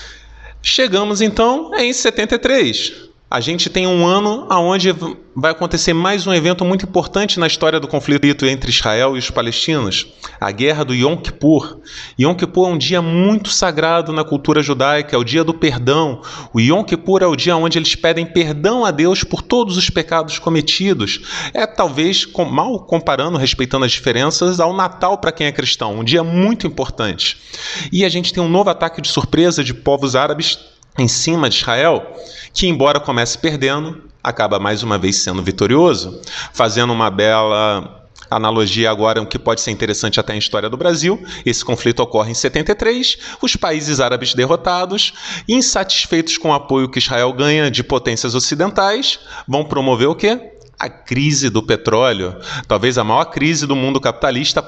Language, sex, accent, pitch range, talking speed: Portuguese, male, Brazilian, 125-180 Hz, 170 wpm